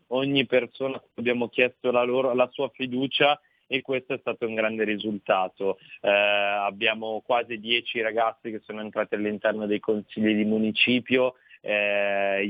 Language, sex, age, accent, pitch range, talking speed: Italian, male, 30-49, native, 110-125 Hz, 145 wpm